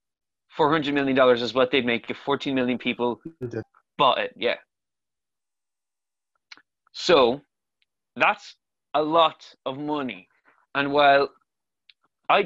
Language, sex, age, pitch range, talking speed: English, male, 20-39, 130-160 Hz, 100 wpm